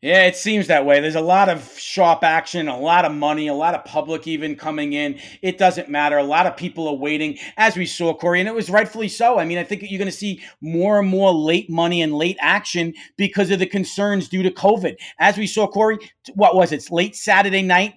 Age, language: 40-59, English